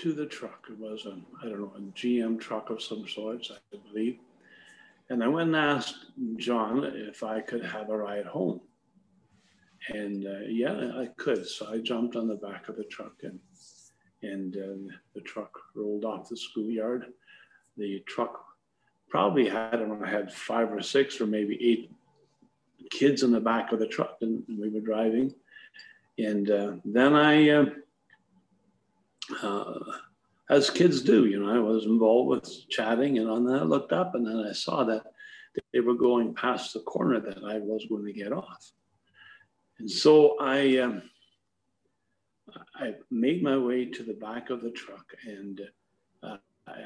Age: 50-69